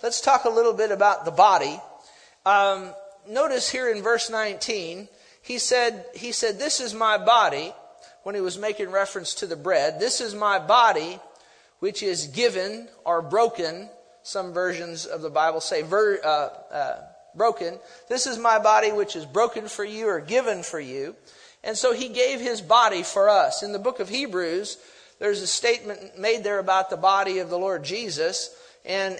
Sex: male